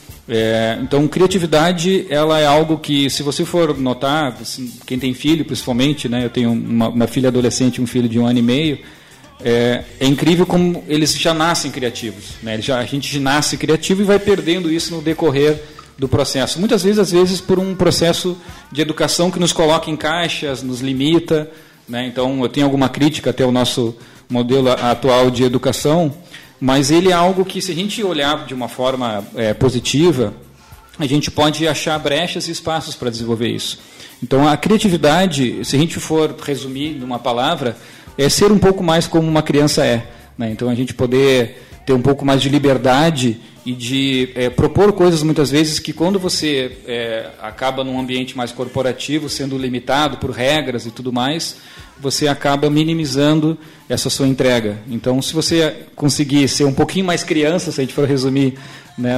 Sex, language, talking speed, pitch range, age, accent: male, Portuguese, 185 wpm, 125-155 Hz, 40-59, Brazilian